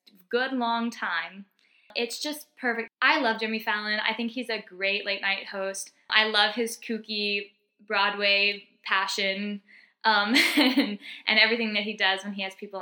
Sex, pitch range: female, 200-245 Hz